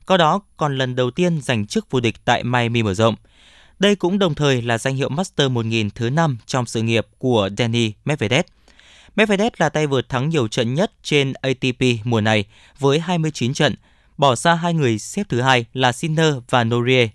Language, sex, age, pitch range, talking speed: Vietnamese, male, 20-39, 120-160 Hz, 200 wpm